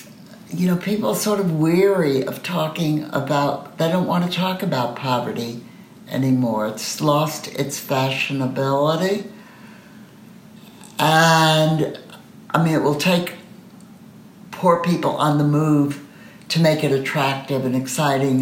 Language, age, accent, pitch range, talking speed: English, 60-79, American, 140-210 Hz, 125 wpm